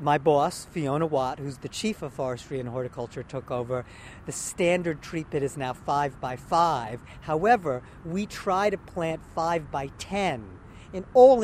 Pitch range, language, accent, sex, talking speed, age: 135-170 Hz, English, American, male, 170 wpm, 50-69